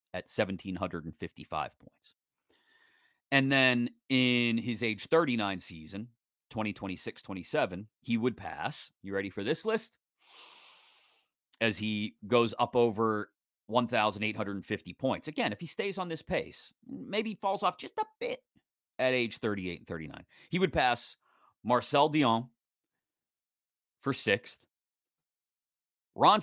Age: 30-49